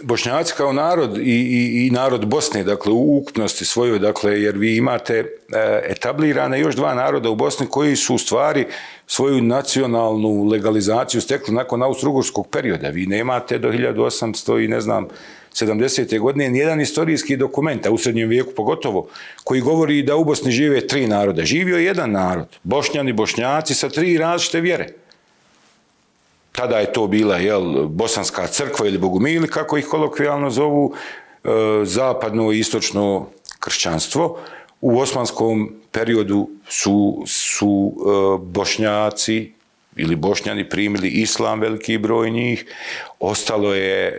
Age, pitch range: 40-59, 100-140 Hz